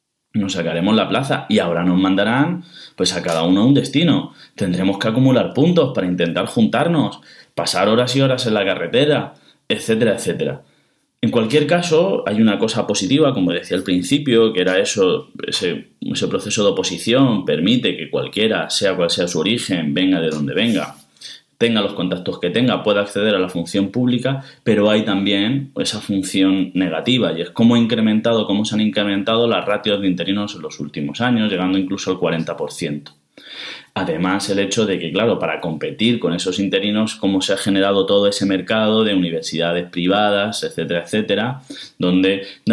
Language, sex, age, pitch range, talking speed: Spanish, male, 20-39, 90-115 Hz, 175 wpm